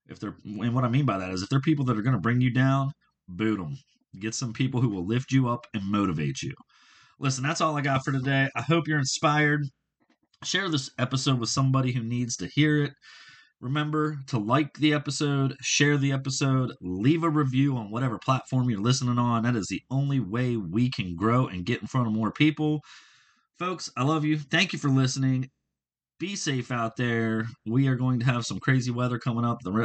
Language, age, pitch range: English, 30-49, 115-145 Hz